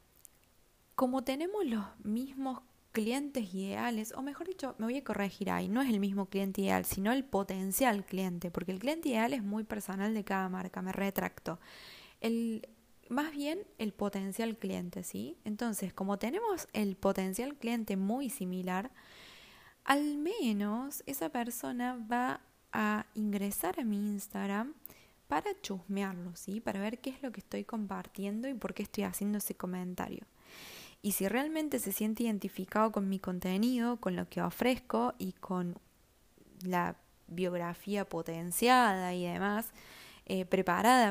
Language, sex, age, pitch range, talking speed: Spanish, female, 20-39, 190-240 Hz, 145 wpm